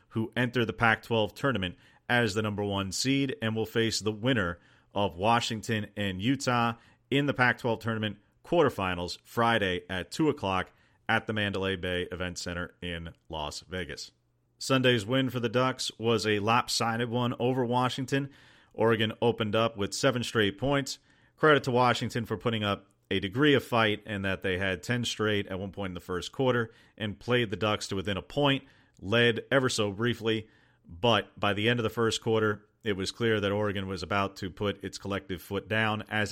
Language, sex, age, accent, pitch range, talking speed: English, male, 40-59, American, 100-120 Hz, 185 wpm